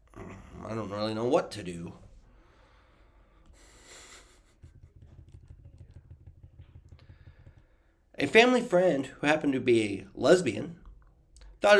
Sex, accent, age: male, American, 30-49